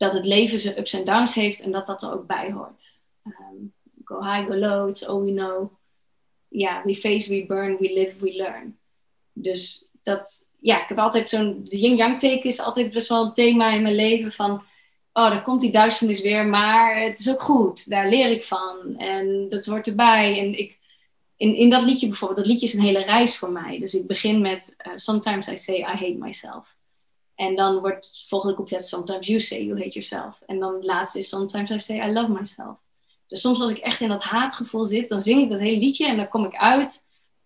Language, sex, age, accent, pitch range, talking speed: Dutch, female, 20-39, Dutch, 195-230 Hz, 225 wpm